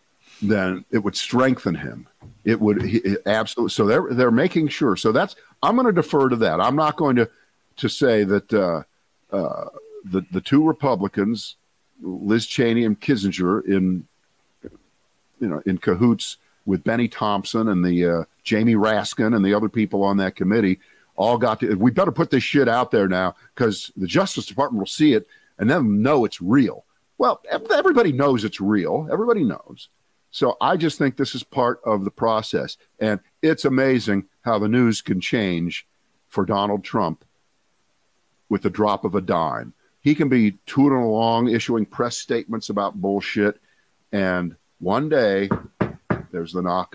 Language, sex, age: English, male, 50-69